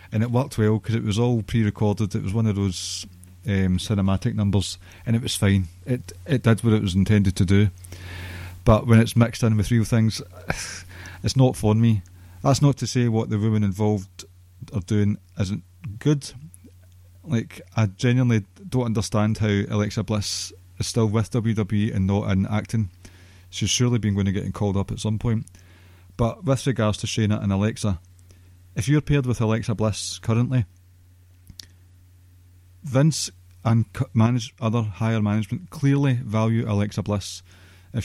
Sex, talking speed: male, 165 wpm